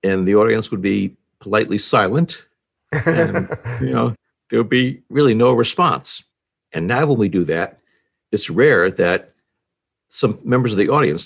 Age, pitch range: 60-79, 105-140 Hz